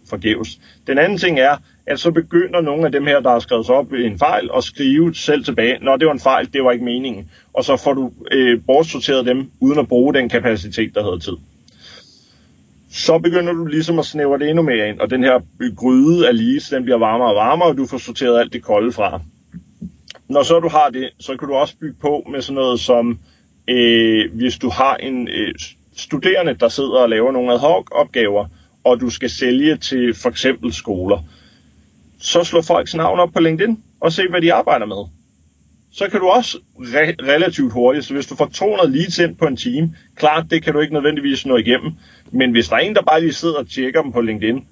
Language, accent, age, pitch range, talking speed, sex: Danish, native, 30-49, 120-160 Hz, 225 wpm, male